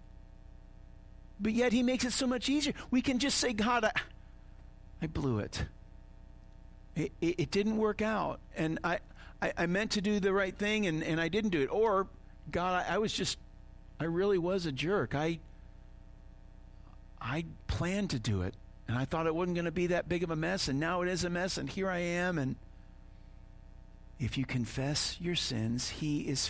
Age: 50-69